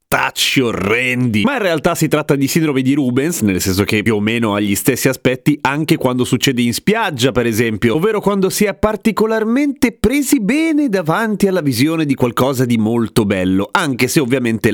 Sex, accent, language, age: male, native, Italian, 30-49